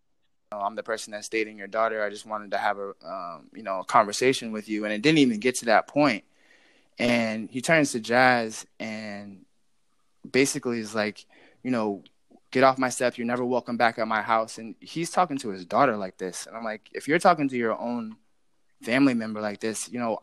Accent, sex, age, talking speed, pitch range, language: American, male, 20-39, 220 wpm, 110-125 Hz, English